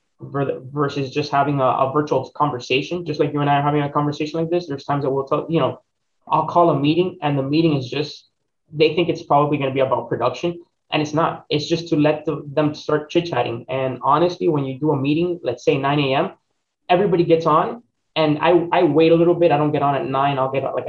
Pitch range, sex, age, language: 140-165 Hz, male, 20-39, English